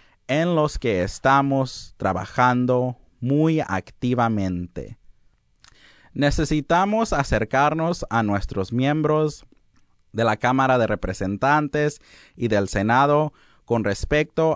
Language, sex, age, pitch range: English, male, 30-49, 100-140 Hz